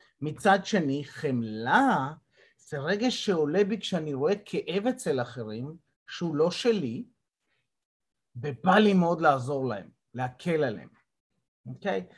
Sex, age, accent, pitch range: male, 30-49, native, 140-205 Hz